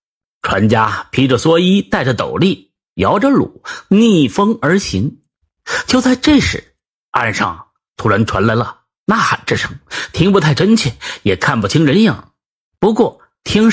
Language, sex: Chinese, male